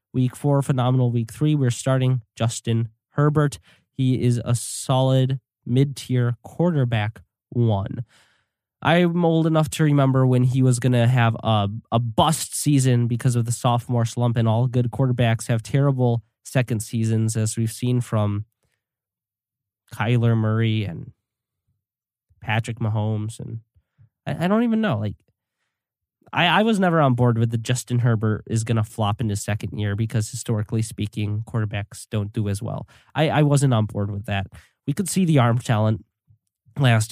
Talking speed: 160 wpm